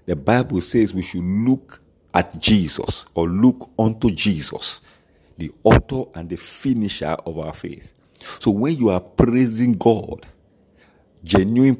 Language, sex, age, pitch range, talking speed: English, male, 50-69, 95-120 Hz, 135 wpm